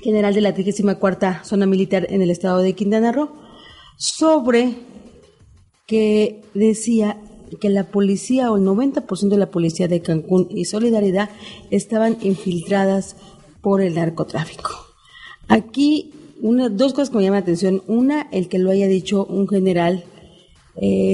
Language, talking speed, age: Spanish, 145 wpm, 40-59